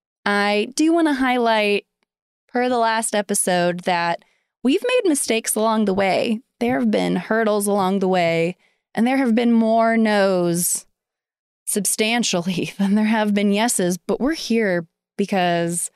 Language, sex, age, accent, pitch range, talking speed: English, female, 20-39, American, 190-245 Hz, 145 wpm